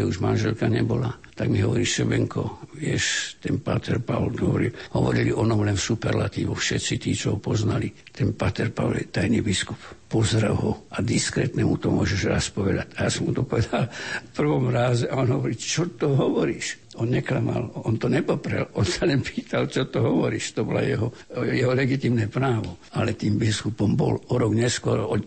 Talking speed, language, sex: 185 wpm, Slovak, male